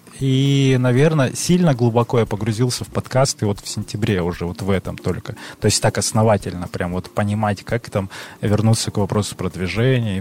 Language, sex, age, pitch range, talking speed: Russian, male, 20-39, 100-125 Hz, 180 wpm